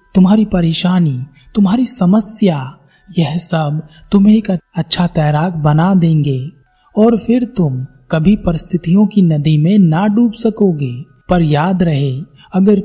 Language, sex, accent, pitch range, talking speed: Hindi, male, native, 150-200 Hz, 125 wpm